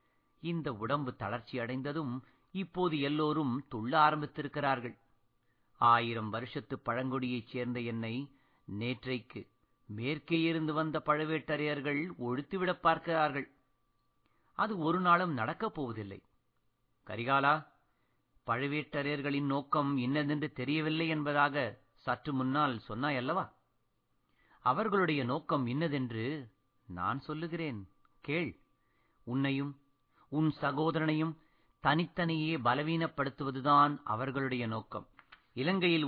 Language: Tamil